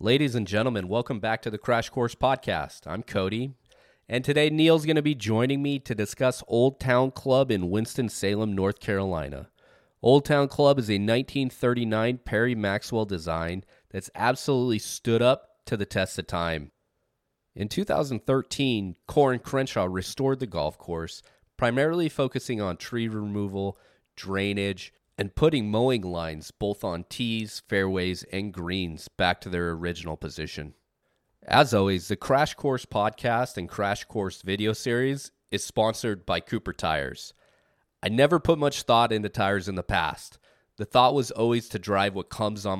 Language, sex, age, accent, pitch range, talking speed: English, male, 30-49, American, 95-125 Hz, 155 wpm